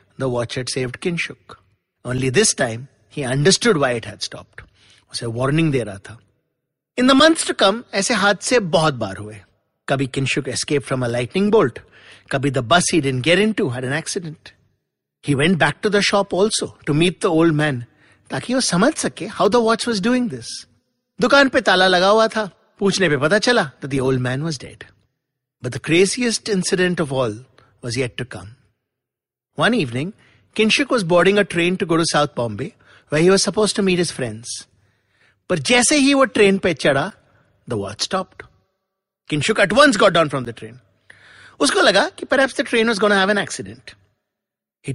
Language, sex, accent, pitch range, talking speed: English, male, Indian, 130-205 Hz, 180 wpm